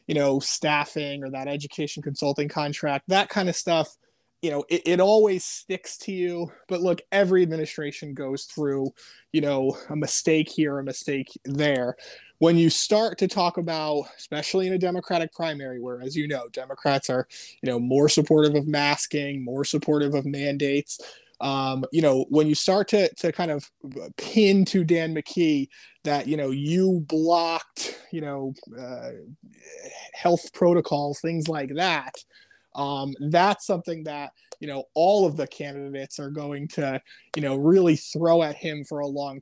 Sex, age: male, 20-39